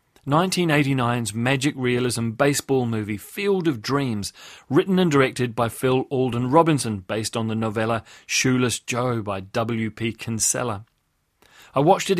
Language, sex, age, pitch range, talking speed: English, male, 30-49, 115-140 Hz, 135 wpm